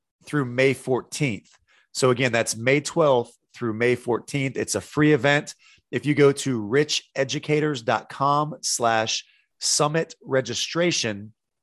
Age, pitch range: 30-49, 115-140 Hz